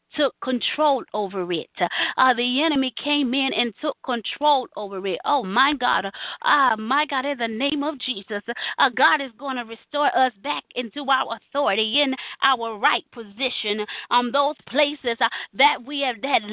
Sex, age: female, 30-49